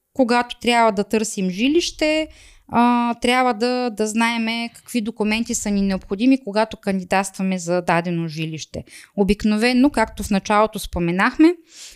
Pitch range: 190-235 Hz